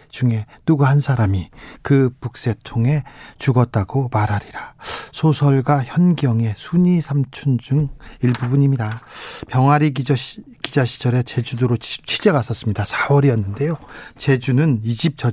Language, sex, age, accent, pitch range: Korean, male, 40-59, native, 125-160 Hz